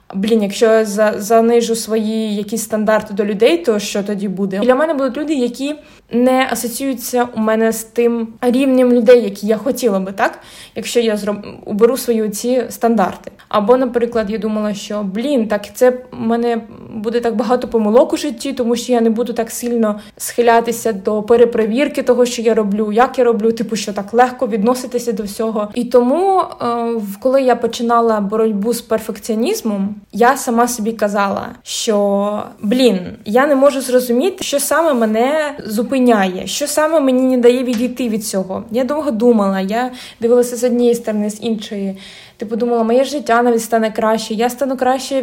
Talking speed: 170 wpm